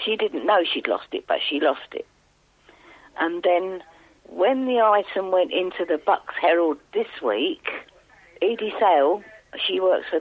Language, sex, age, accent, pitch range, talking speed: English, female, 50-69, British, 155-215 Hz, 160 wpm